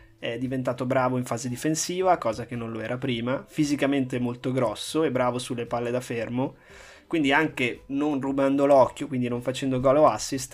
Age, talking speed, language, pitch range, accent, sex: 20-39, 180 wpm, Italian, 125-165 Hz, native, male